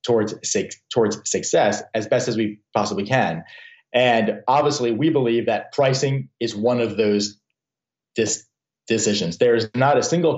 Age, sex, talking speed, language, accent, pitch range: 30-49, male, 155 wpm, English, American, 110-130 Hz